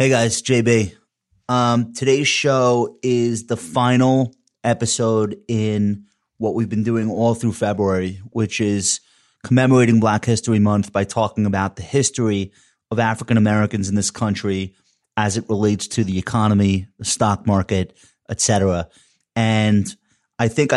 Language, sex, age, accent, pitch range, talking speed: English, male, 30-49, American, 105-125 Hz, 140 wpm